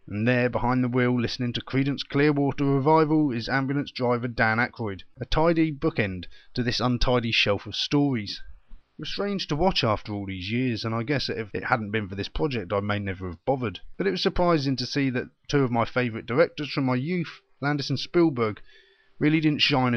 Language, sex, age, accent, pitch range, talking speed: English, male, 30-49, British, 115-150 Hz, 205 wpm